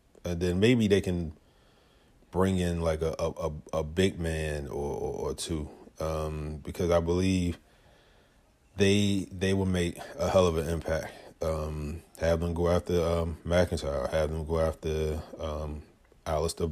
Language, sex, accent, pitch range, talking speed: English, male, American, 80-90 Hz, 160 wpm